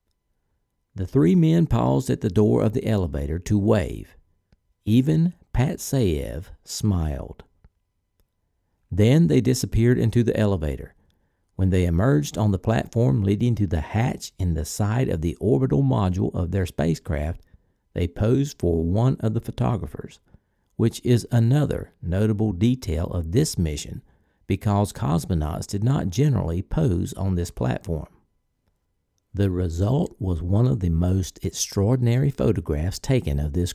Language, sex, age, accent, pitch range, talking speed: English, male, 60-79, American, 90-115 Hz, 135 wpm